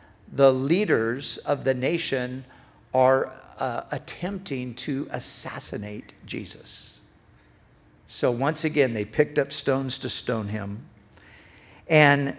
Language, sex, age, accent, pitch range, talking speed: English, male, 50-69, American, 105-140 Hz, 105 wpm